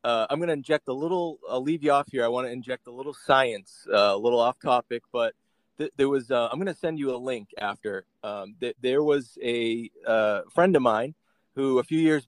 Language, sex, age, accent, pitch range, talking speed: English, male, 30-49, American, 115-140 Hz, 245 wpm